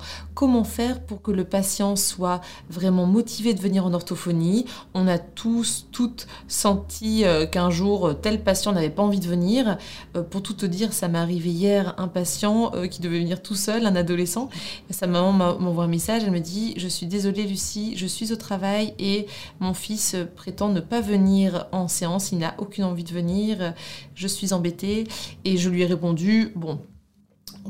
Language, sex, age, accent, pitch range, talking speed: French, female, 30-49, French, 175-210 Hz, 185 wpm